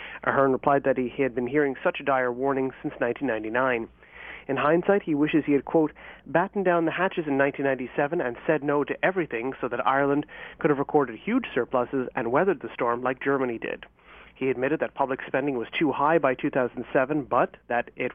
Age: 30-49